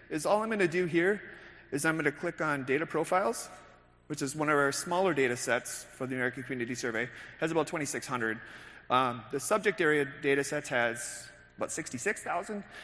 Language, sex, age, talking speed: English, male, 30-49, 175 wpm